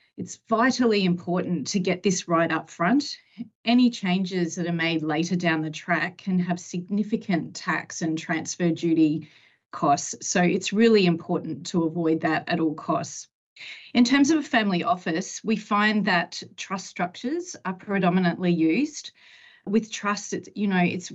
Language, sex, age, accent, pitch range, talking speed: English, female, 30-49, Australian, 170-215 Hz, 155 wpm